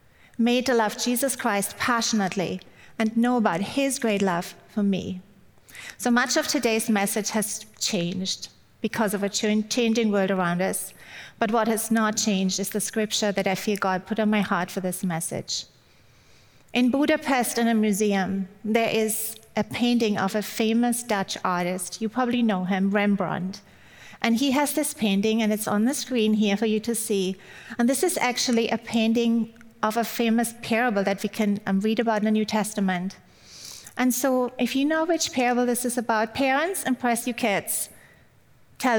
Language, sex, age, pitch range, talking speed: English, female, 40-59, 200-240 Hz, 180 wpm